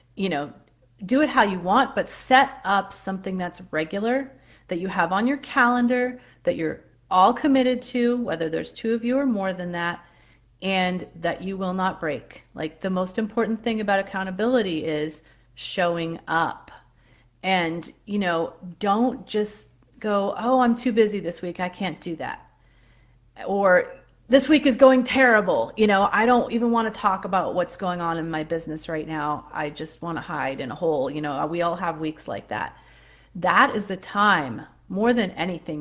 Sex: female